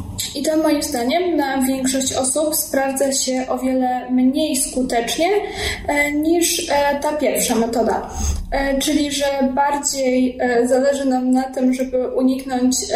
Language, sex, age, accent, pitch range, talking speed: Polish, female, 10-29, native, 245-285 Hz, 120 wpm